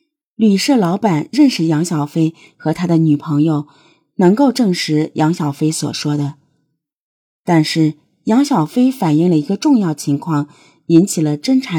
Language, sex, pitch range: Chinese, female, 150-225 Hz